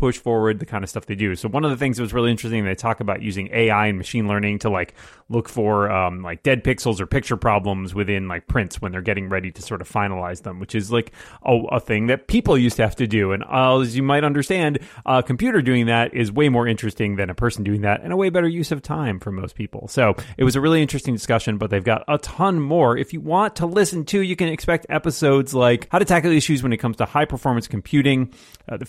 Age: 30-49